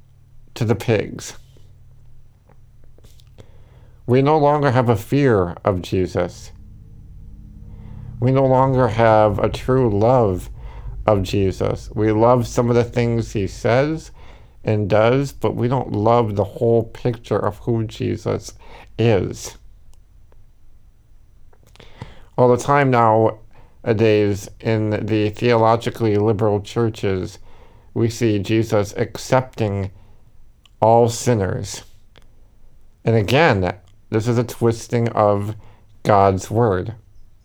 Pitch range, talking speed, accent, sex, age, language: 105-125 Hz, 105 wpm, American, male, 50-69, English